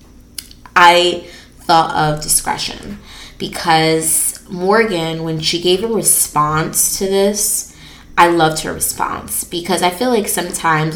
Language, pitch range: English, 155-175 Hz